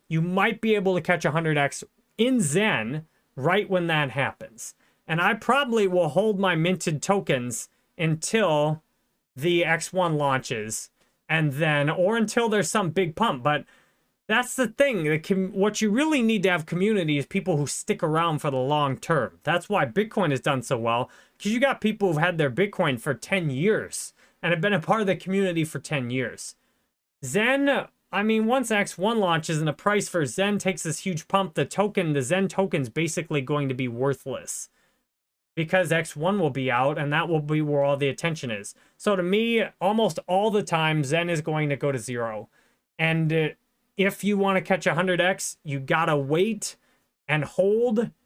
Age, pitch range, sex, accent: 30-49, 150-200 Hz, male, American